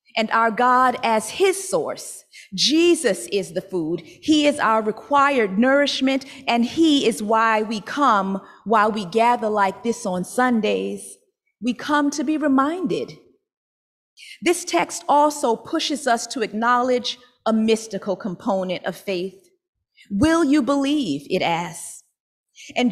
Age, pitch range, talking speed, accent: 30-49, 220-305 Hz, 135 wpm, American